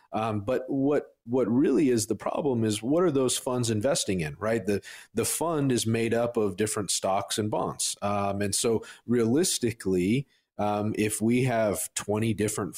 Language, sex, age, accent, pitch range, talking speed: English, male, 40-59, American, 95-115 Hz, 175 wpm